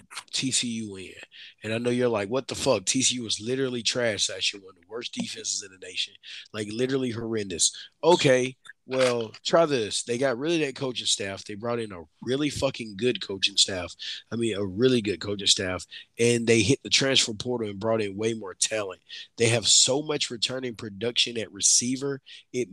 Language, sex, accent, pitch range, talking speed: English, male, American, 110-135 Hz, 195 wpm